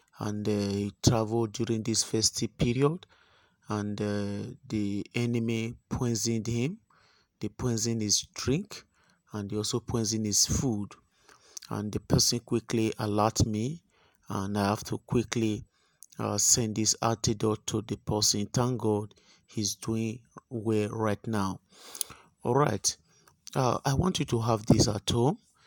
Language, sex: English, male